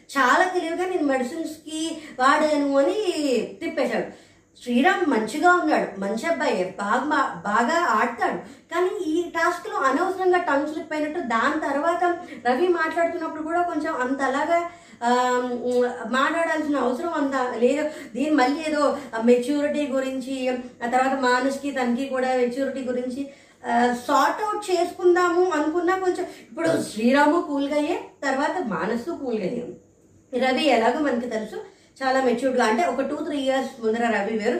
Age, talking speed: 20-39, 130 wpm